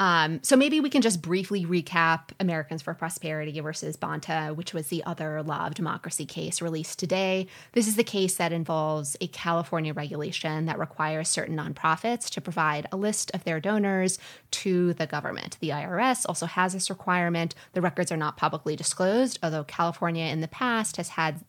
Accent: American